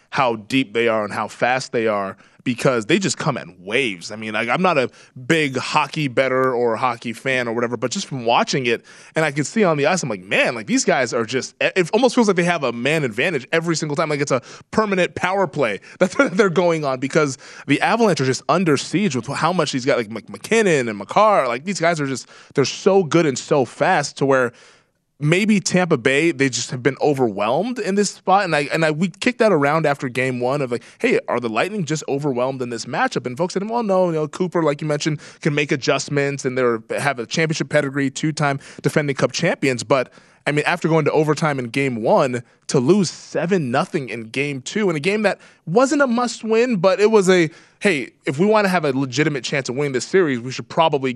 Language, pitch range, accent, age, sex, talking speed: English, 130-180 Hz, American, 20-39, male, 235 wpm